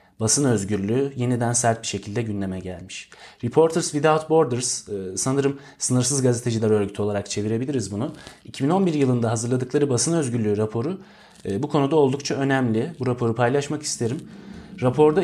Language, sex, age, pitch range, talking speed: Turkish, male, 30-49, 105-140 Hz, 130 wpm